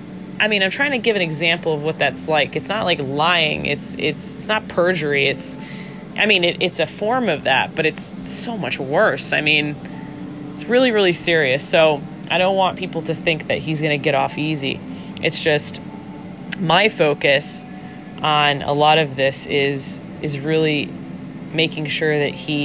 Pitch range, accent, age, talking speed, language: 145-185 Hz, American, 20-39, 185 wpm, English